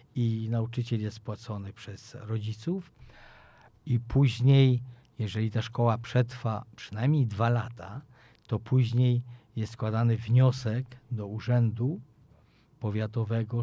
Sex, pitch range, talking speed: male, 110-125 Hz, 100 wpm